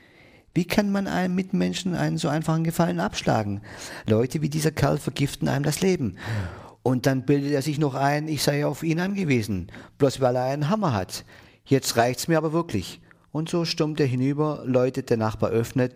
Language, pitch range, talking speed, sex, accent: German, 110-140 Hz, 190 wpm, male, German